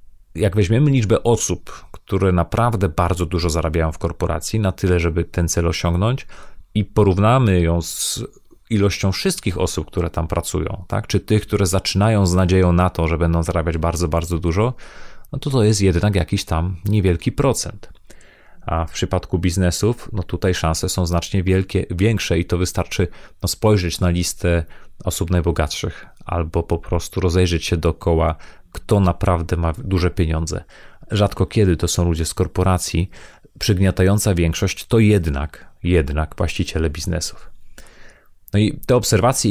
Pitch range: 85-100 Hz